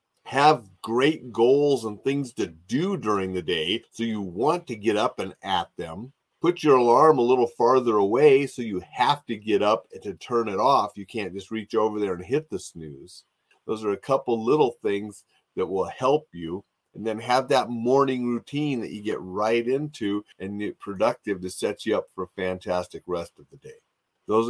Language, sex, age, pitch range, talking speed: English, male, 40-59, 100-135 Hz, 205 wpm